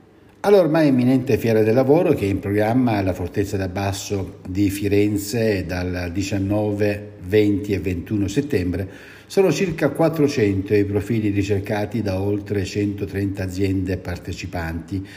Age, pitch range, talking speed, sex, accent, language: 60-79, 100-140 Hz, 125 wpm, male, native, Italian